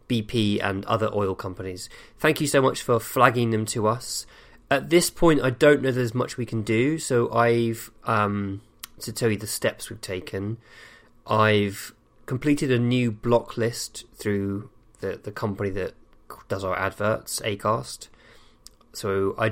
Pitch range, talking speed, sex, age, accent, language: 100-120 Hz, 160 wpm, male, 20-39, British, English